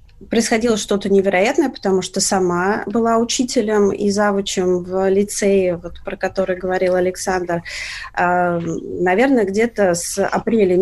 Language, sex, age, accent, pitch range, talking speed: Russian, female, 20-39, native, 175-210 Hz, 110 wpm